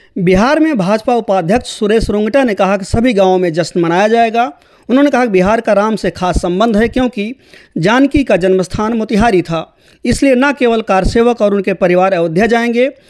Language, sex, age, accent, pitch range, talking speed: English, male, 40-59, Indian, 190-240 Hz, 185 wpm